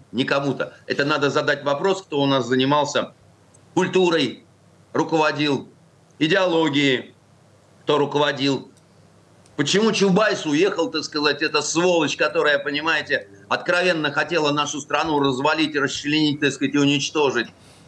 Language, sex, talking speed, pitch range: Russian, male, 115 wpm, 135-165 Hz